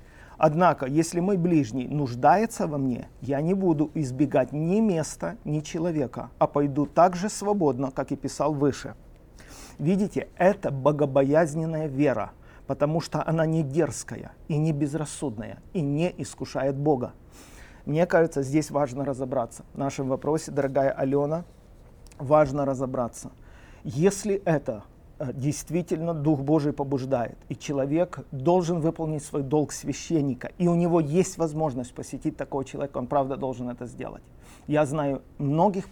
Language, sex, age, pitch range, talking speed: Russian, male, 50-69, 135-165 Hz, 135 wpm